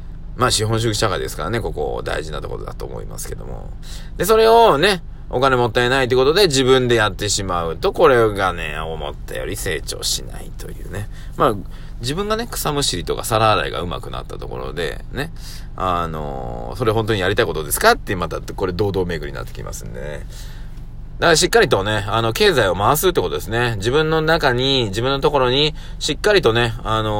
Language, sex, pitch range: Japanese, male, 95-140 Hz